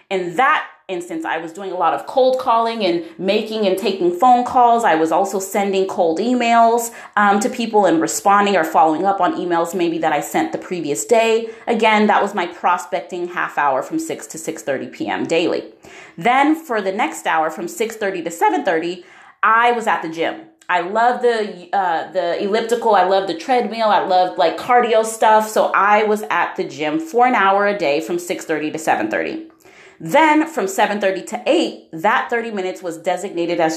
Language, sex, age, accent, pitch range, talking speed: English, female, 30-49, American, 180-235 Hz, 190 wpm